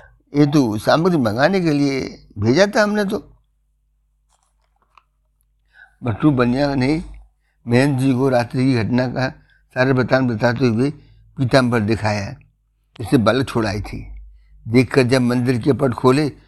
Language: Hindi